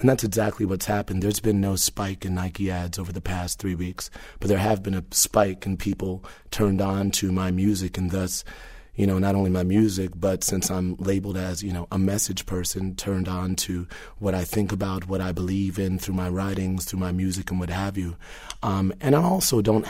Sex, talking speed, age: male, 225 wpm, 30-49